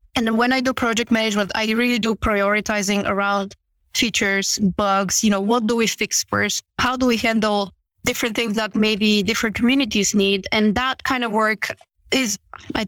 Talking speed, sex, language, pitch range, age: 175 wpm, female, English, 195-225 Hz, 20-39